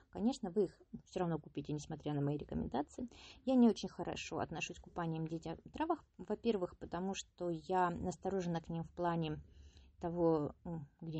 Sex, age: female, 20-39